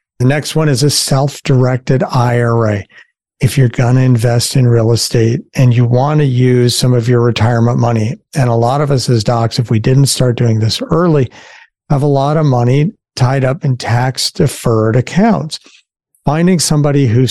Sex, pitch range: male, 120-145 Hz